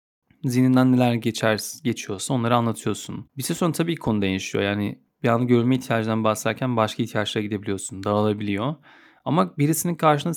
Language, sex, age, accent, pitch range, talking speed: Turkish, male, 30-49, native, 110-145 Hz, 145 wpm